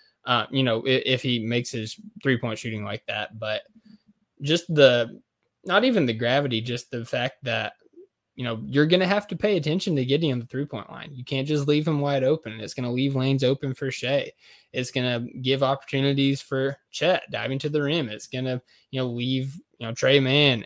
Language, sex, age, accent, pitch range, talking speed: English, male, 20-39, American, 120-145 Hz, 210 wpm